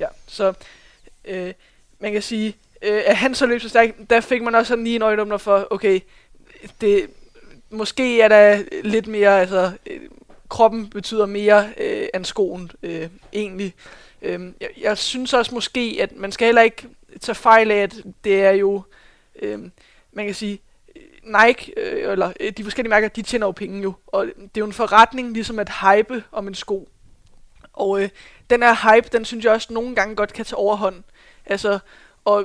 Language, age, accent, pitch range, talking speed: Danish, 20-39, native, 195-230 Hz, 170 wpm